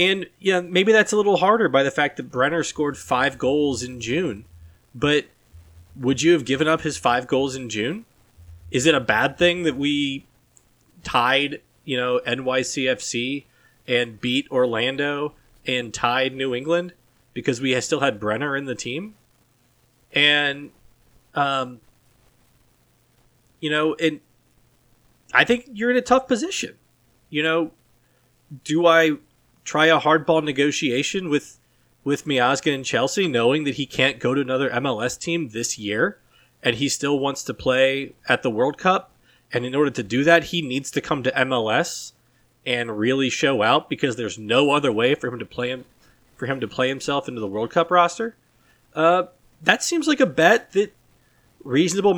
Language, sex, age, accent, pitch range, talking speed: English, male, 20-39, American, 125-165 Hz, 170 wpm